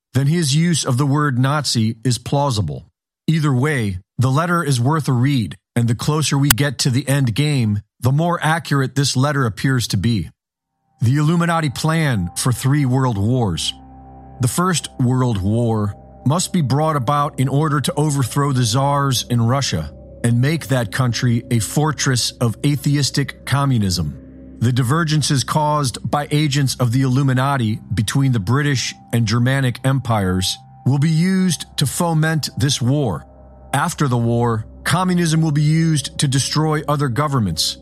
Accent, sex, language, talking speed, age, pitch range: American, male, English, 155 wpm, 40-59, 120-150 Hz